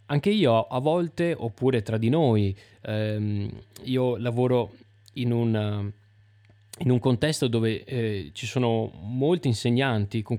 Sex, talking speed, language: male, 125 wpm, Italian